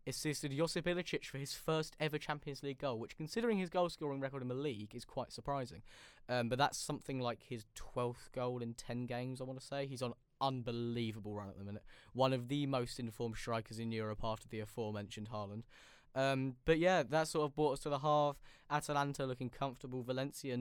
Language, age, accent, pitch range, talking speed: English, 10-29, British, 120-145 Hz, 205 wpm